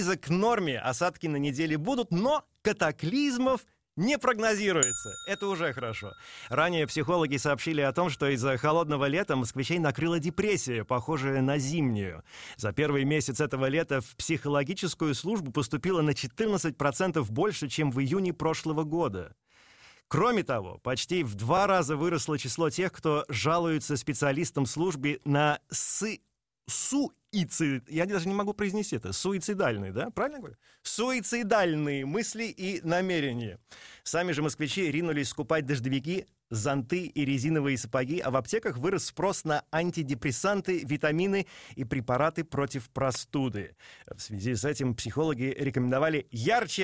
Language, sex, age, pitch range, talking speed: Russian, male, 30-49, 140-185 Hz, 135 wpm